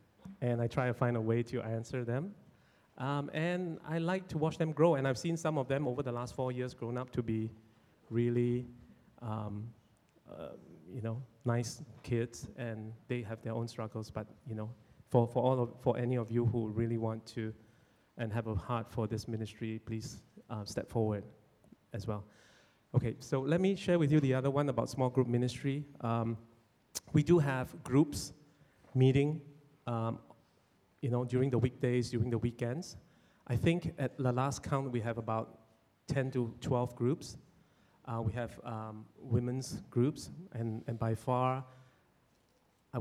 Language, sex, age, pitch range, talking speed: English, male, 30-49, 115-130 Hz, 175 wpm